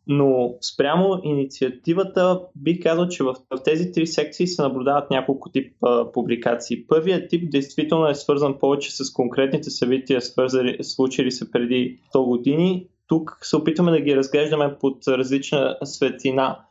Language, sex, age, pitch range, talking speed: Bulgarian, male, 20-39, 135-160 Hz, 140 wpm